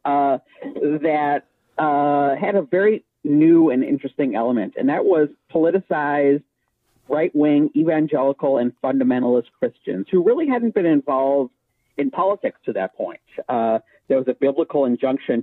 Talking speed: 135 wpm